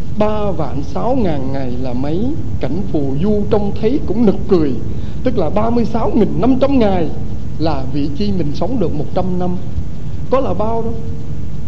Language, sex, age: Vietnamese, male, 60-79